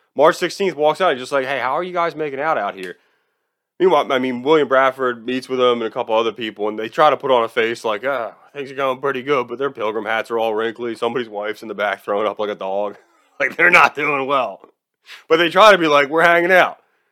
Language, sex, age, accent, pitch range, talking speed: English, male, 20-39, American, 120-180 Hz, 265 wpm